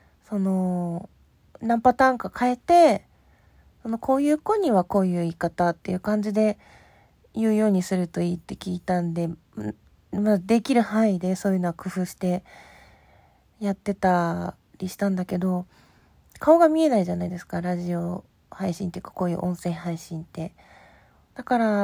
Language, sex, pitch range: Japanese, female, 180-235 Hz